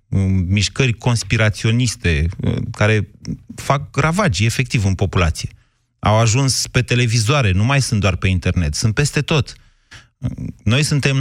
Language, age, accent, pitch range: Romanian, 30-49, native, 105-135 Hz